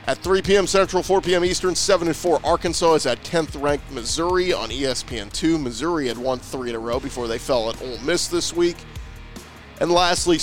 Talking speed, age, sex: 195 wpm, 40-59, male